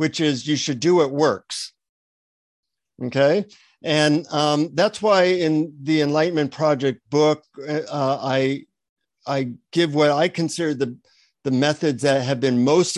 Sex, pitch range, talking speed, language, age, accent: male, 130-155 Hz, 145 wpm, English, 50-69, American